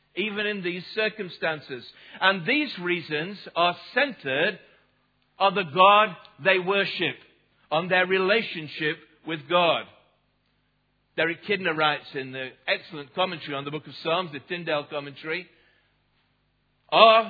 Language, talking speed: English, 120 wpm